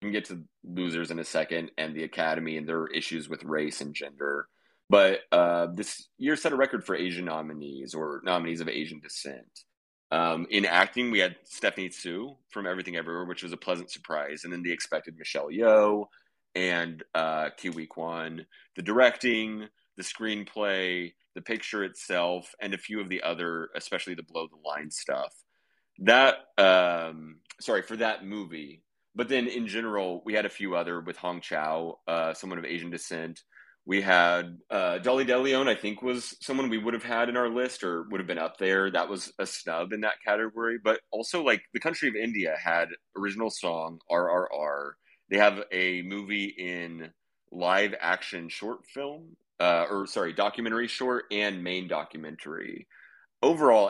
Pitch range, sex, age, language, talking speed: 80-105 Hz, male, 30-49, English, 175 wpm